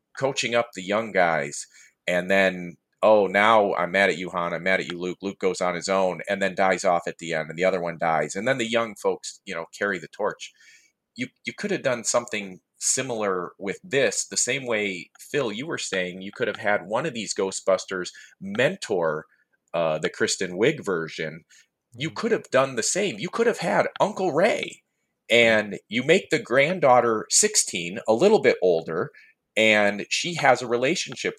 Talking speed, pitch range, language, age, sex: 195 wpm, 95-150 Hz, English, 30-49, male